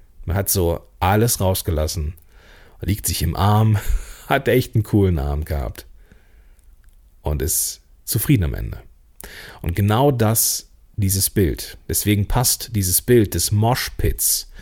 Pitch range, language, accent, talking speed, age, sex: 85-130 Hz, German, German, 125 wpm, 40-59, male